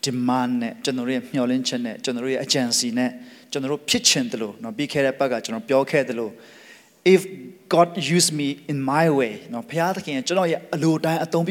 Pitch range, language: 130-180 Hz, English